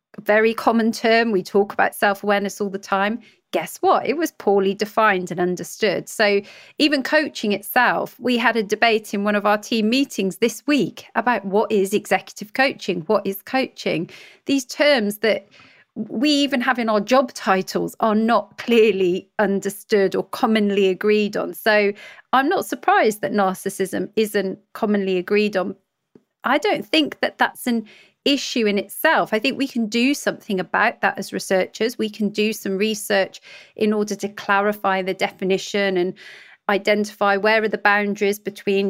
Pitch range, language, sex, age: 195-230 Hz, English, female, 30-49